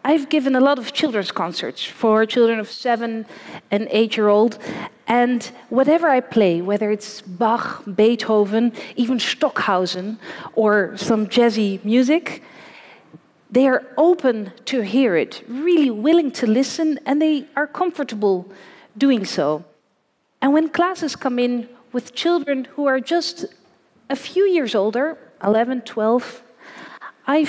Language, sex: Arabic, female